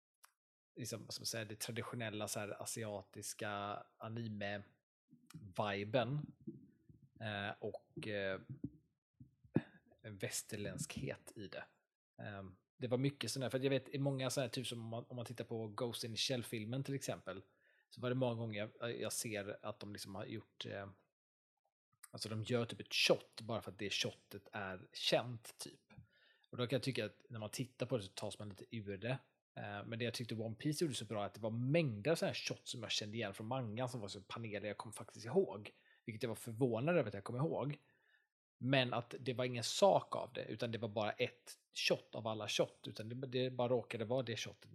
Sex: male